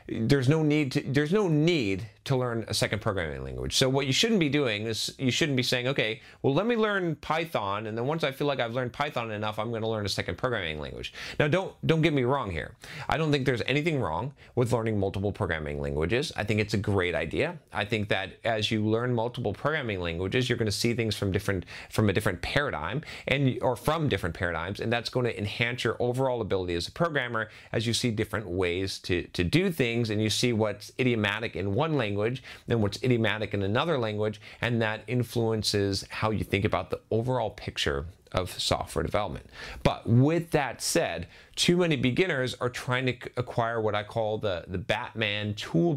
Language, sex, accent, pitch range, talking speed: English, male, American, 105-130 Hz, 210 wpm